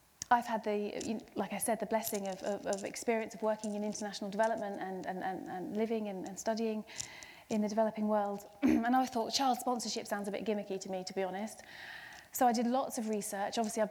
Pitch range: 210-245 Hz